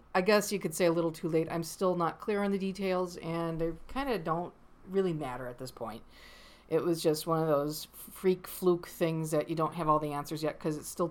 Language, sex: English, female